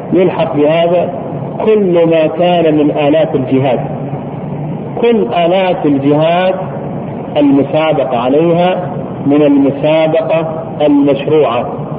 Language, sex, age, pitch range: Arabic, male, 50-69, 140-175 Hz